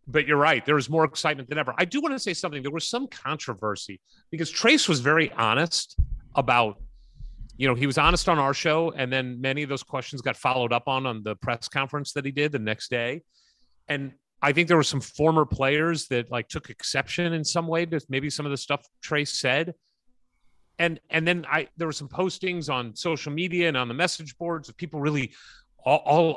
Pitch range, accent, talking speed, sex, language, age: 135-180 Hz, American, 220 wpm, male, English, 30-49